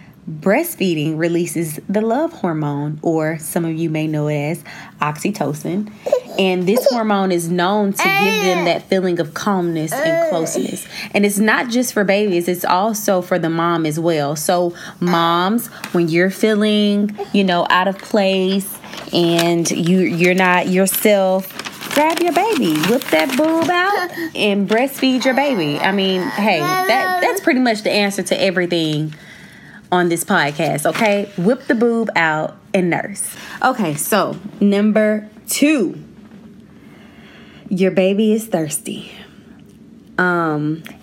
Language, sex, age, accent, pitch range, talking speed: English, female, 20-39, American, 170-215 Hz, 140 wpm